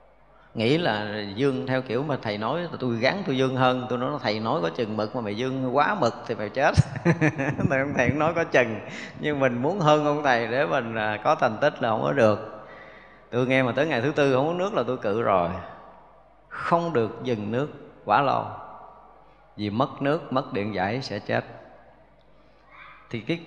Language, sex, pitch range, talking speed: Vietnamese, male, 110-145 Hz, 200 wpm